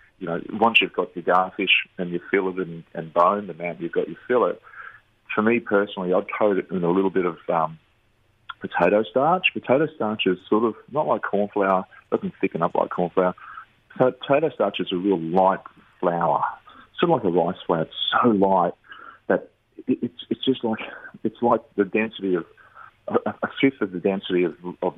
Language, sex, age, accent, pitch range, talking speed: English, male, 30-49, Australian, 90-105 Hz, 195 wpm